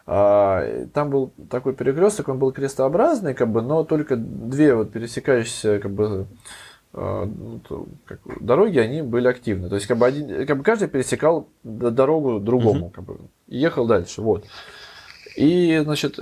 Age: 20-39